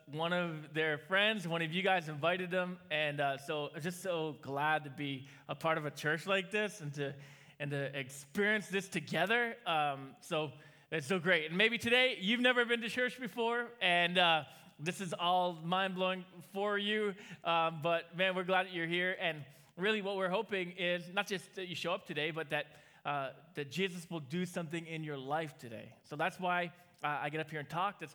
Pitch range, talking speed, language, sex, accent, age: 150-195 Hz, 210 wpm, English, male, American, 20-39